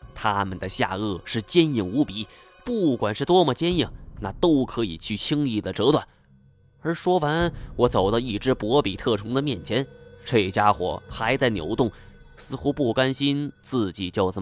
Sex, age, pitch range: male, 20-39, 100-150 Hz